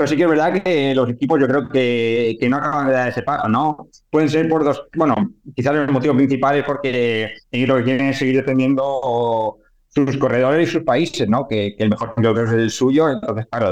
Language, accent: Spanish, Spanish